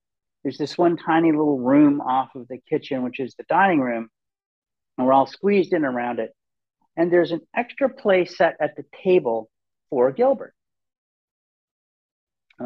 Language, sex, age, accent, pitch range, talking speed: English, male, 50-69, American, 125-185 Hz, 160 wpm